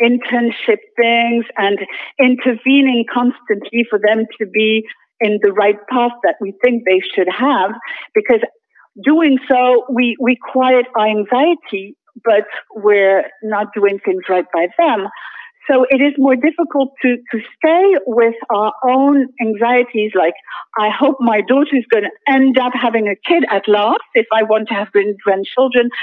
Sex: female